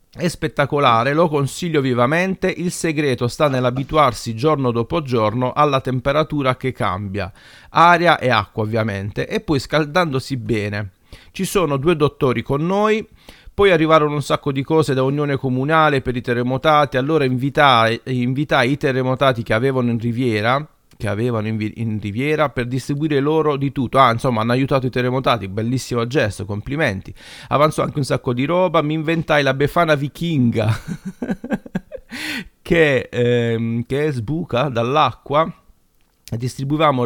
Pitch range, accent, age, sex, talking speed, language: 115-155 Hz, native, 40-59, male, 140 wpm, Italian